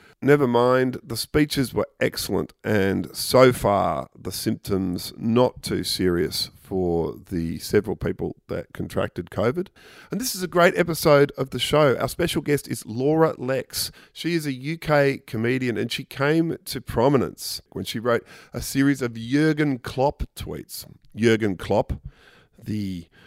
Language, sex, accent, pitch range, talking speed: English, male, Australian, 95-130 Hz, 150 wpm